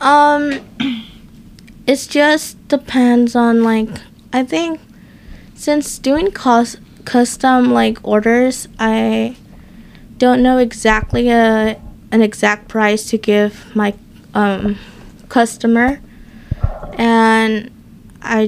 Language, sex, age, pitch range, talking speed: English, female, 10-29, 210-235 Hz, 95 wpm